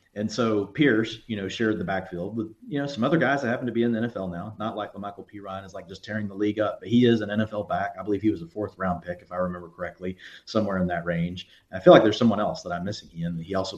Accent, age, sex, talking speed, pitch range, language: American, 40-59, male, 300 wpm, 100-120 Hz, English